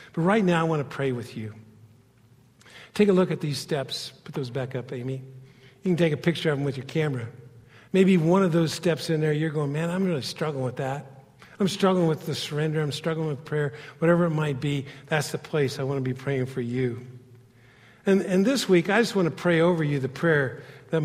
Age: 50-69